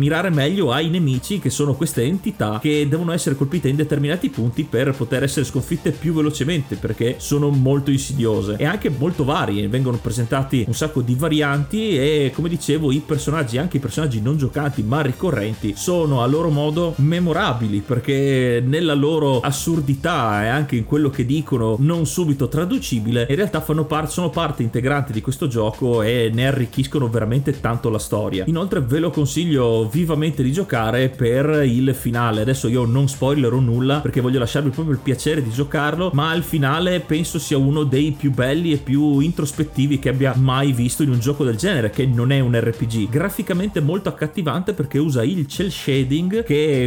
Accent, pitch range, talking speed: native, 125-155 Hz, 180 wpm